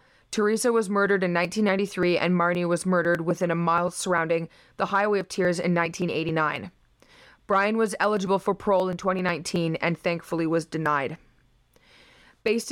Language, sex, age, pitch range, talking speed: English, female, 20-39, 180-210 Hz, 145 wpm